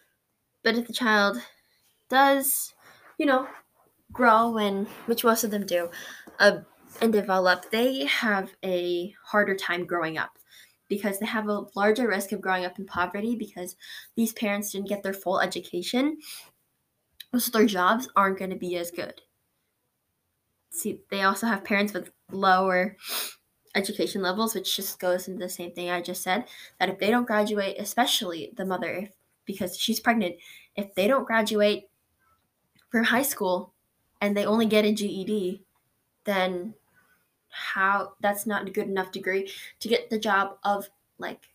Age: 10-29